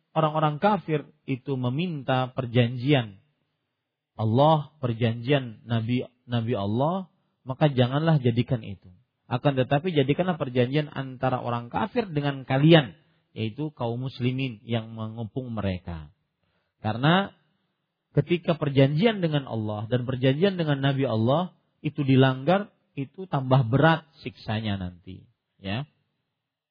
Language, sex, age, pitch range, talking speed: Malay, male, 40-59, 120-165 Hz, 105 wpm